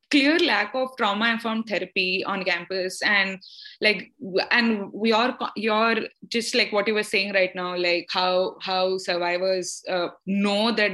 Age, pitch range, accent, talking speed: 20-39, 185-225 Hz, Indian, 155 wpm